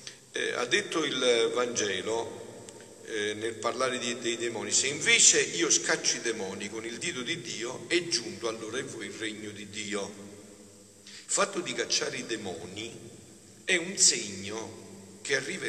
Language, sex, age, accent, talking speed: Italian, male, 50-69, native, 160 wpm